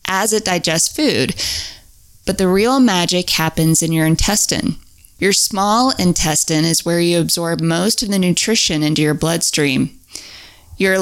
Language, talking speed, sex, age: English, 145 wpm, female, 20-39